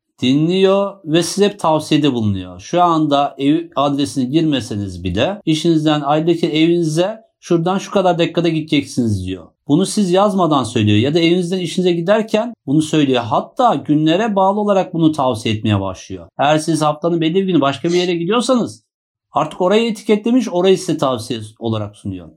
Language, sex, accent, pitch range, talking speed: Turkish, male, native, 130-170 Hz, 155 wpm